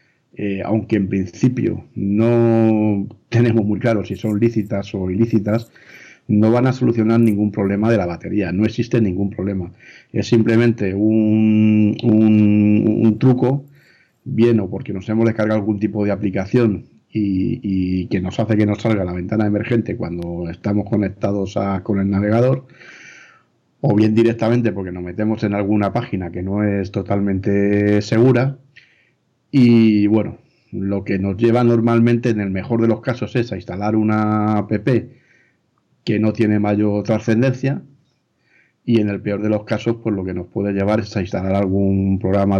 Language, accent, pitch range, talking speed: Spanish, Spanish, 100-115 Hz, 160 wpm